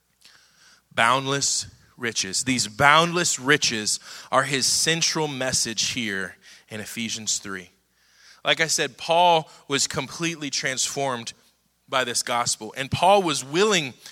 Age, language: 20-39, English